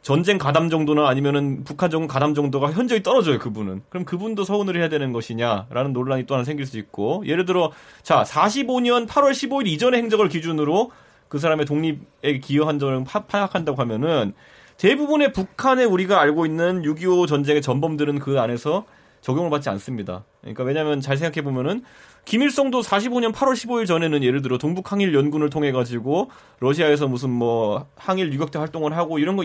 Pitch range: 135-195 Hz